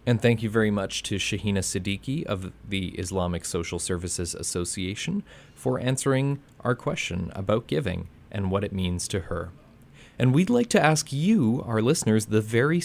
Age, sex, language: 30-49, male, English